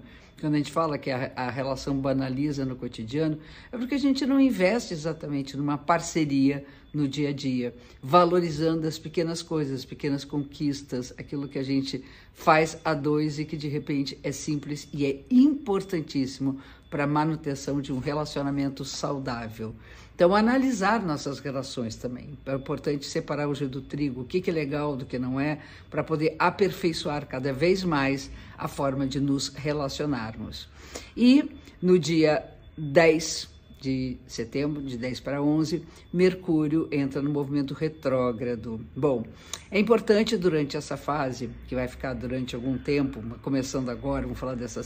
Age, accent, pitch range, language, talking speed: 50-69, Brazilian, 130-160 Hz, Portuguese, 155 wpm